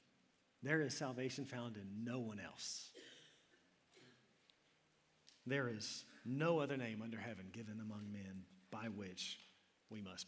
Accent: American